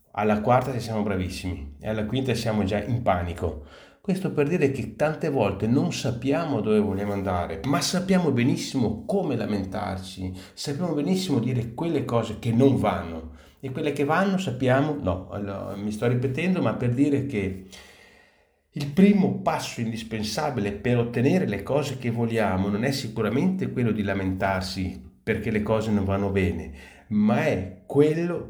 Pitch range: 95-120 Hz